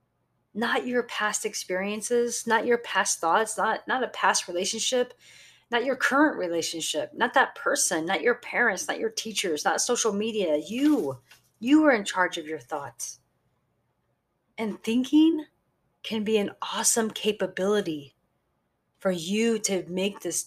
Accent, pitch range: American, 195-250 Hz